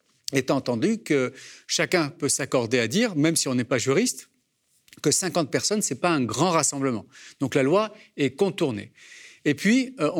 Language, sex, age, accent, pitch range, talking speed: French, male, 40-59, French, 130-180 Hz, 180 wpm